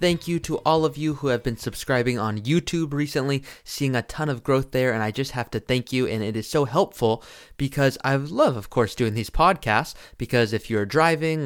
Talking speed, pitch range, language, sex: 225 wpm, 115-150 Hz, English, male